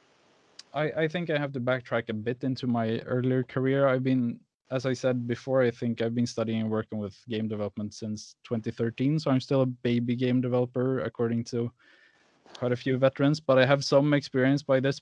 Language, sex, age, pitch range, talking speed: English, male, 20-39, 120-140 Hz, 200 wpm